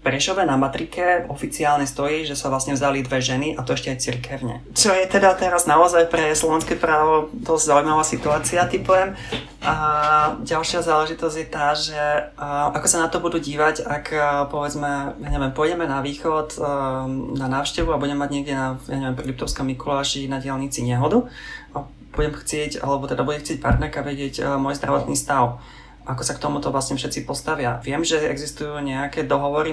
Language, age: Slovak, 20-39